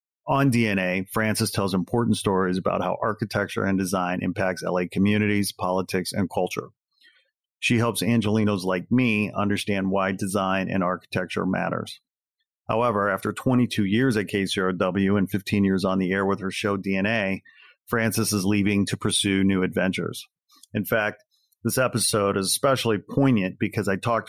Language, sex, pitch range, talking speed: English, male, 95-110 Hz, 150 wpm